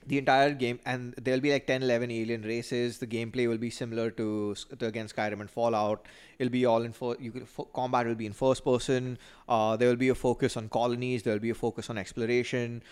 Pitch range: 115-135 Hz